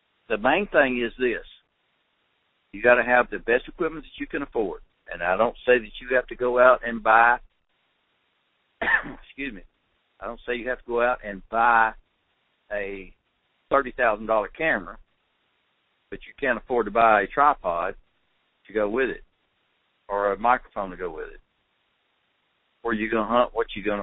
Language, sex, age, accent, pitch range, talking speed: English, male, 60-79, American, 110-145 Hz, 175 wpm